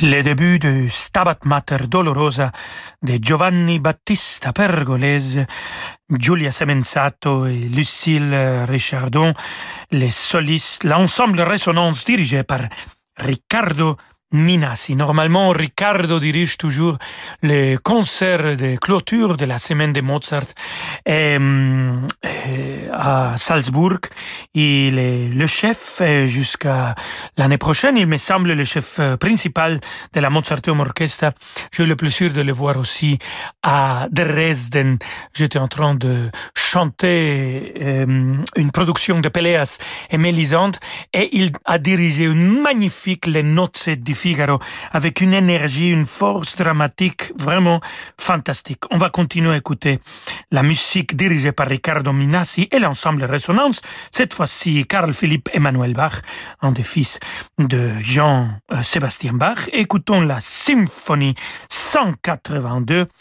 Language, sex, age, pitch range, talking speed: French, male, 40-59, 135-175 Hz, 120 wpm